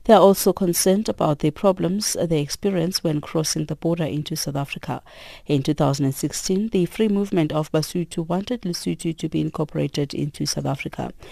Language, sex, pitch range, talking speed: English, female, 150-190 Hz, 165 wpm